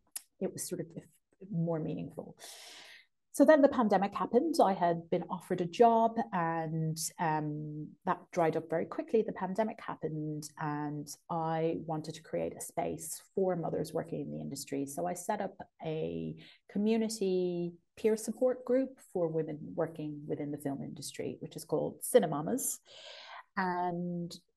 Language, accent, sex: English, British, female